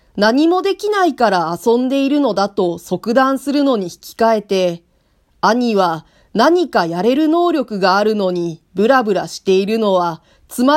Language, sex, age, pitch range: Japanese, female, 40-59, 175-270 Hz